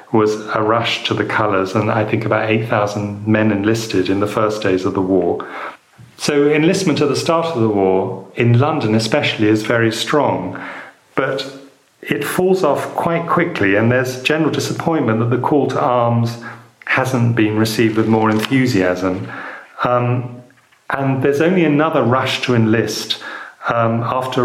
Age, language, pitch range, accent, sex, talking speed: 40-59, English, 110-125 Hz, British, male, 160 wpm